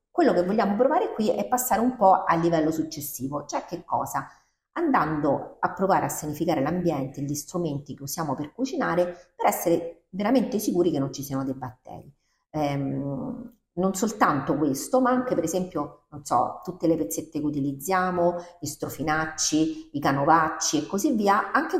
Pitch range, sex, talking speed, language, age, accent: 140-185 Hz, female, 165 wpm, Italian, 40-59, native